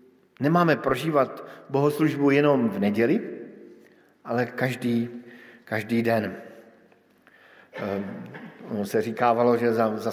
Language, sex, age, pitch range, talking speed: Slovak, male, 50-69, 120-155 Hz, 95 wpm